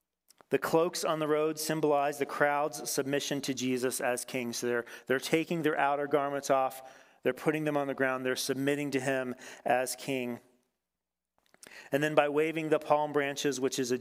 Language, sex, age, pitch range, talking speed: English, male, 40-59, 130-150 Hz, 185 wpm